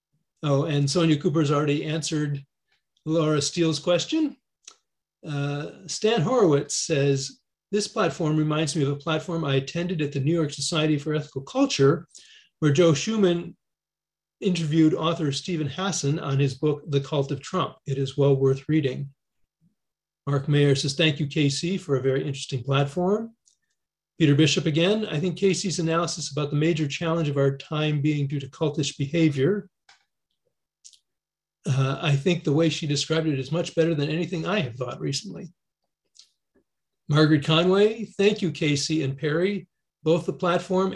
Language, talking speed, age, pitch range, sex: English, 155 wpm, 40-59, 145-175 Hz, male